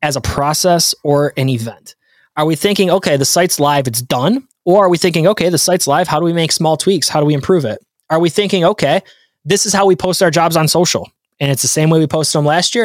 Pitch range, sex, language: 135-180 Hz, male, English